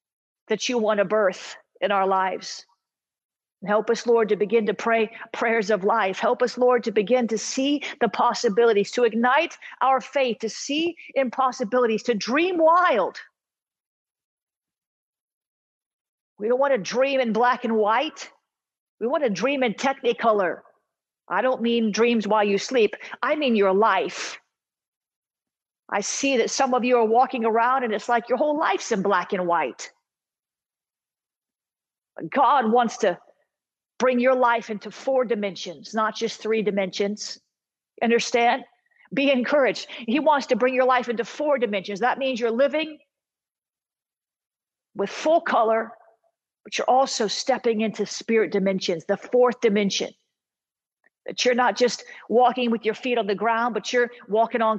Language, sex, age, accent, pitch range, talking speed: English, female, 50-69, American, 220-260 Hz, 150 wpm